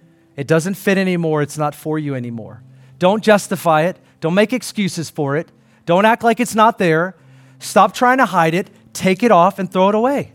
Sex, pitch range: male, 155-220 Hz